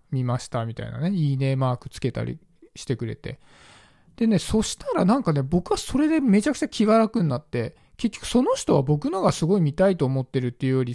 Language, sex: Japanese, male